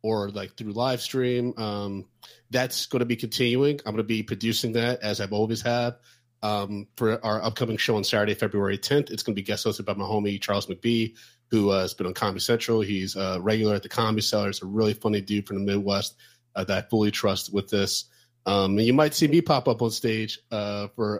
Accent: American